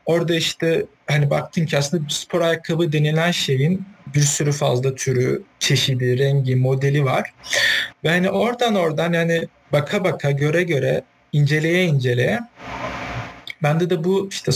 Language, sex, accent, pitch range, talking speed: Turkish, male, native, 140-185 Hz, 135 wpm